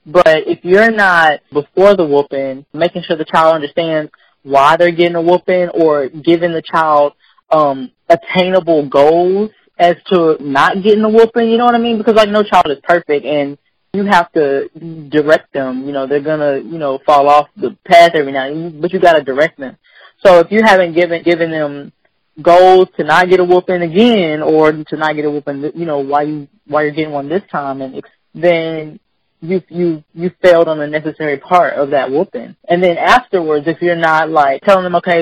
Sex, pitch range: female, 150-180 Hz